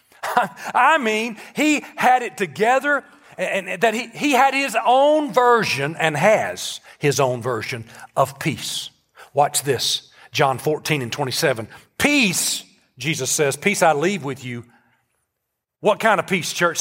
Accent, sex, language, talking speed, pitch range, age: American, male, English, 145 wpm, 145-205 Hz, 40-59